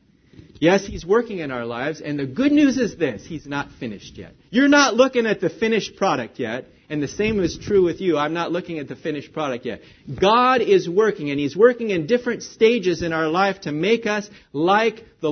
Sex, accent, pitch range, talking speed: male, American, 155-230 Hz, 220 wpm